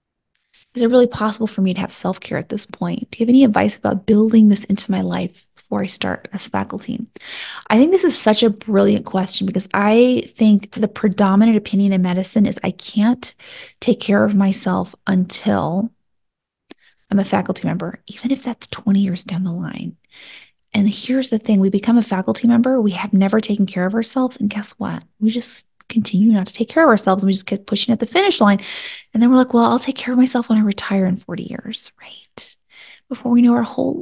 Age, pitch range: 20-39, 195-235 Hz